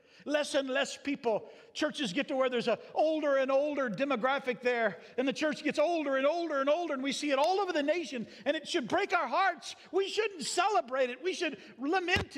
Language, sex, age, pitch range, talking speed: English, male, 50-69, 245-345 Hz, 220 wpm